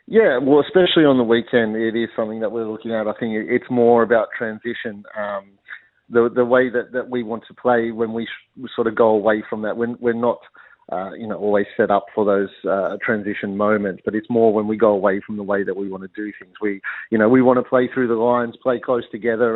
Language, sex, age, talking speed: English, male, 40-59, 250 wpm